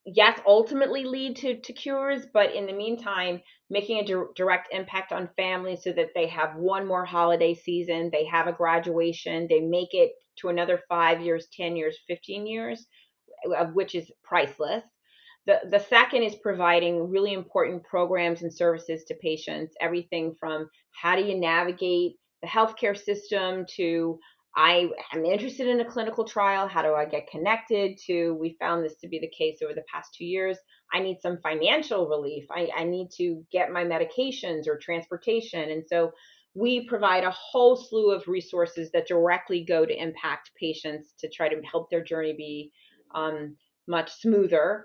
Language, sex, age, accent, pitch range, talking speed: English, female, 30-49, American, 165-210 Hz, 175 wpm